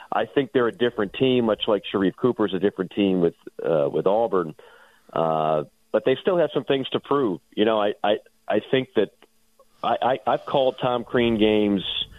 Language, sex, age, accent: English, male, 40-59, American